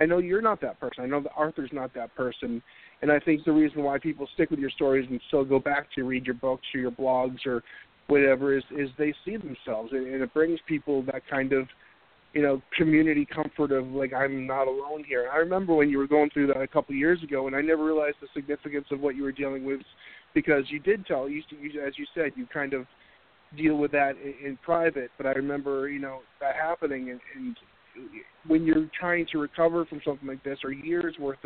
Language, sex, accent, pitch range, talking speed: English, male, American, 135-155 Hz, 240 wpm